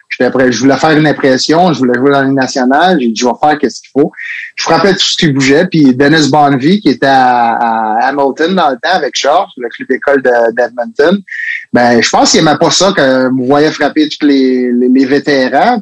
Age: 30-49